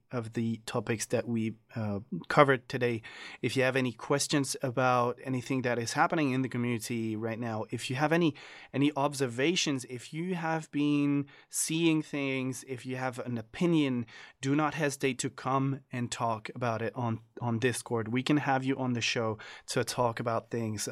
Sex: male